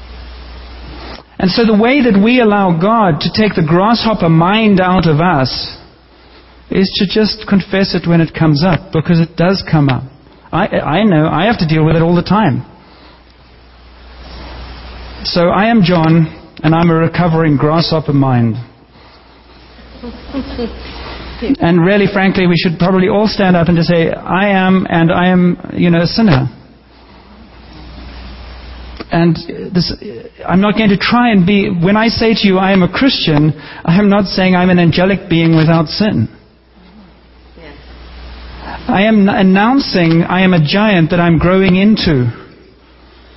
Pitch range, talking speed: 130-195 Hz, 155 wpm